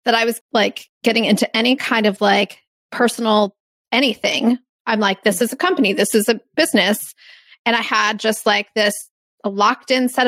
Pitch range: 205-250 Hz